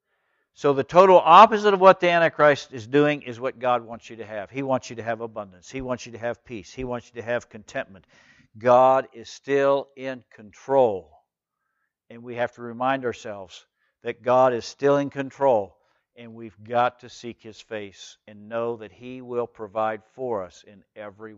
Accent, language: American, English